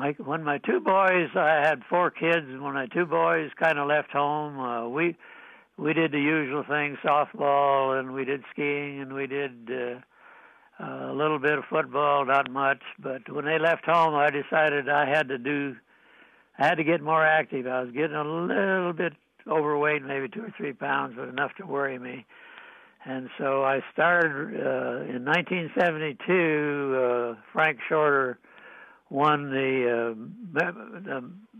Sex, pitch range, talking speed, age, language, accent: male, 135-160 Hz, 165 wpm, 70-89, English, American